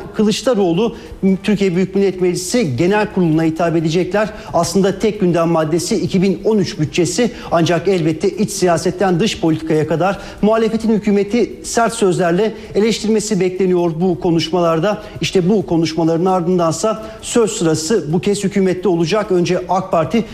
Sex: male